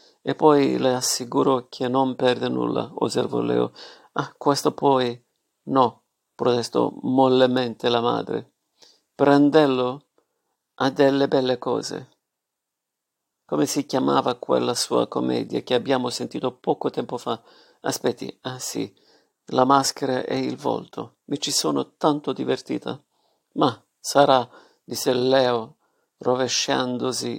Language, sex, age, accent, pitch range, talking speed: Italian, male, 50-69, native, 120-140 Hz, 115 wpm